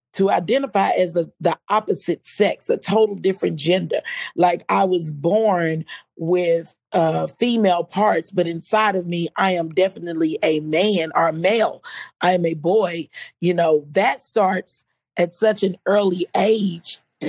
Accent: American